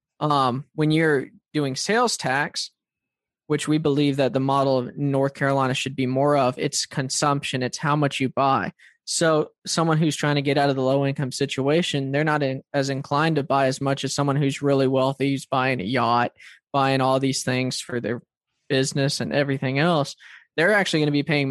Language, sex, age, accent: English, male, 20-39, American